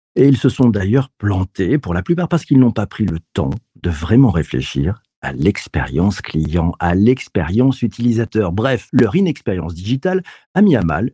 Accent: French